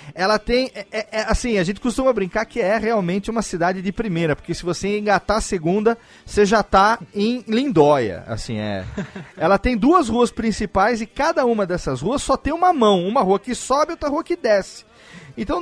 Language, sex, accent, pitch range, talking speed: Portuguese, male, Brazilian, 160-235 Hz, 205 wpm